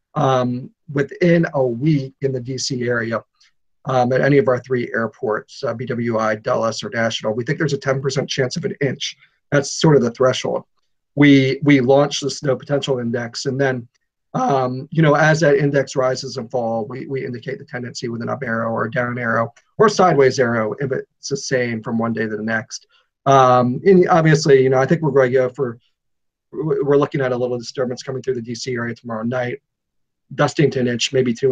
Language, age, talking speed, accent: English, 40-59, 210 wpm, American